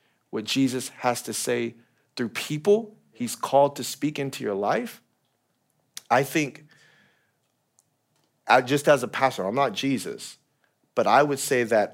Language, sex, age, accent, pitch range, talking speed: English, male, 40-59, American, 110-140 Hz, 145 wpm